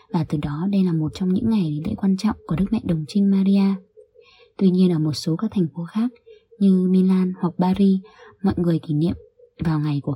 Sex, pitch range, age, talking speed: female, 170-205 Hz, 20-39, 225 wpm